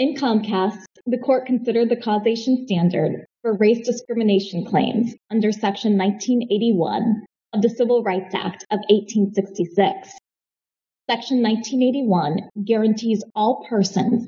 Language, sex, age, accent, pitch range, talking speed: English, female, 20-39, American, 200-240 Hz, 115 wpm